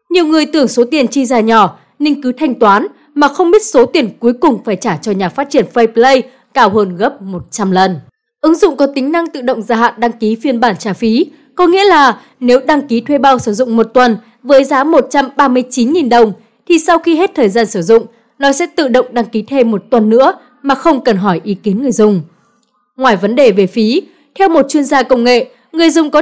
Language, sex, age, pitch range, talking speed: Vietnamese, female, 20-39, 225-290 Hz, 235 wpm